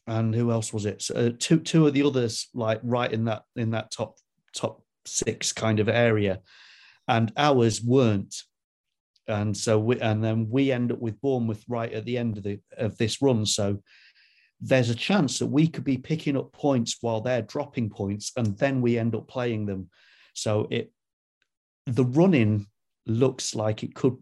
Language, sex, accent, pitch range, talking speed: English, male, British, 110-130 Hz, 190 wpm